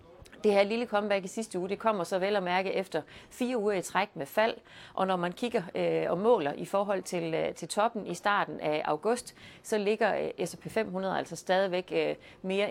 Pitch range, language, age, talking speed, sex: 165-210 Hz, Danish, 30-49, 200 wpm, female